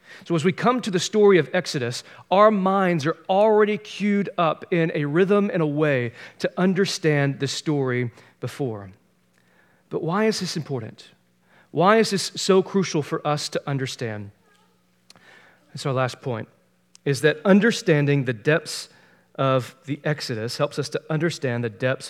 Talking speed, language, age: 160 wpm, English, 40-59